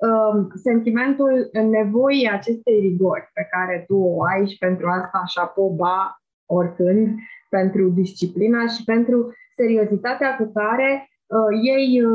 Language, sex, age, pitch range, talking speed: Romanian, female, 20-39, 180-220 Hz, 115 wpm